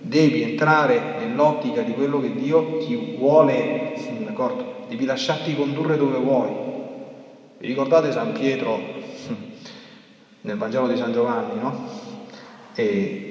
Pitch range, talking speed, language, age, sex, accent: 140-225 Hz, 115 wpm, Italian, 30-49, male, native